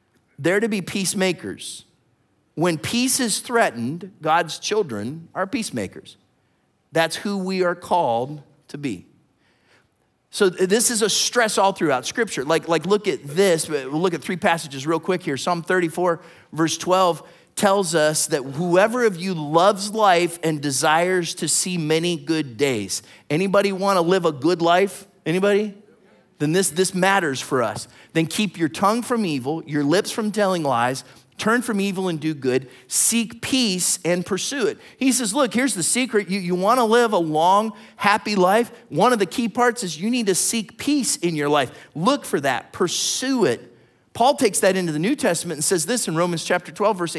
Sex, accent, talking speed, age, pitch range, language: male, American, 180 wpm, 30-49, 160-215 Hz, English